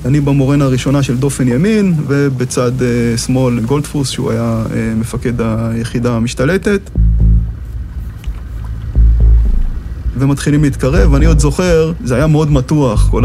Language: Hebrew